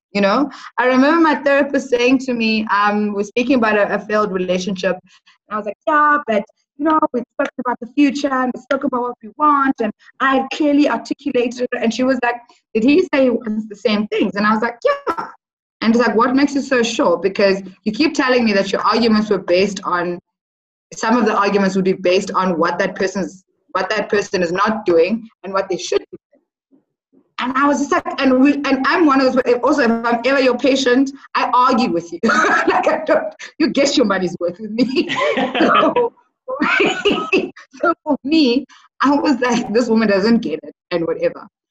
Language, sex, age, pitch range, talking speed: English, female, 20-39, 205-285 Hz, 210 wpm